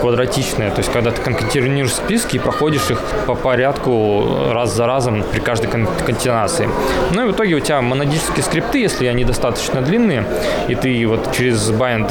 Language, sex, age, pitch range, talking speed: Russian, male, 20-39, 120-140 Hz, 175 wpm